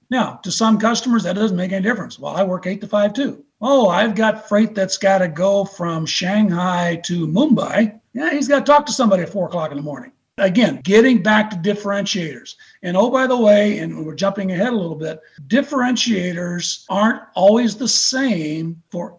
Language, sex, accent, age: English, male, American, 50-69